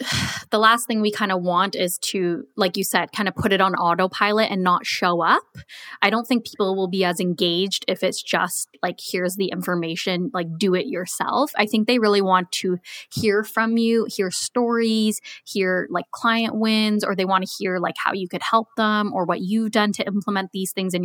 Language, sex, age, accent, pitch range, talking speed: English, female, 20-39, American, 185-220 Hz, 215 wpm